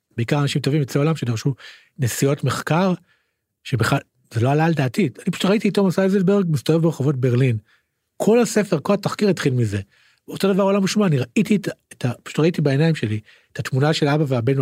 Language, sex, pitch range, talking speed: Hebrew, male, 125-175 Hz, 190 wpm